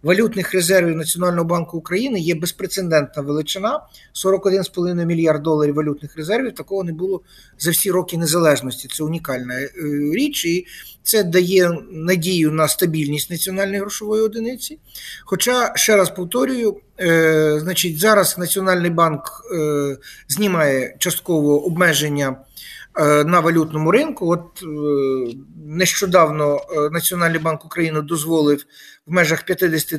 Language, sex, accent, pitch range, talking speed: Ukrainian, male, native, 150-180 Hz, 115 wpm